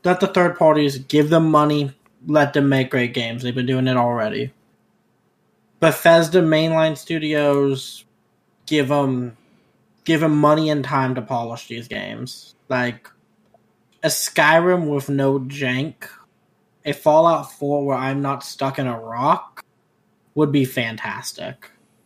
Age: 20-39